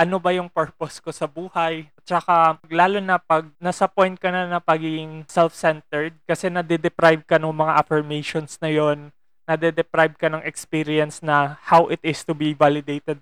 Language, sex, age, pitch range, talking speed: Filipino, male, 20-39, 150-170 Hz, 170 wpm